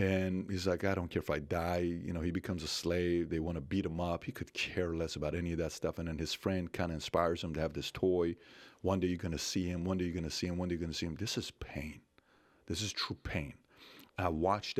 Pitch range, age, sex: 85-105 Hz, 40-59, male